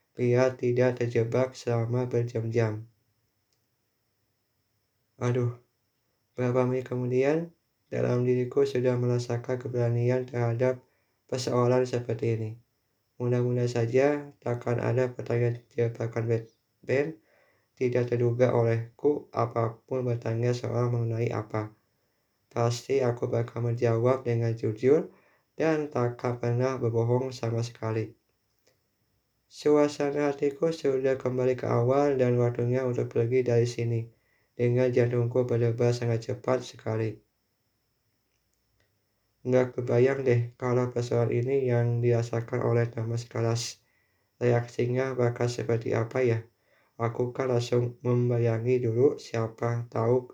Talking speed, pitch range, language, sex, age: 105 wpm, 115-125 Hz, Indonesian, male, 20-39